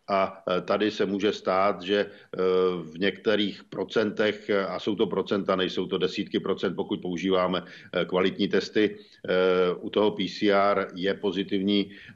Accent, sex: native, male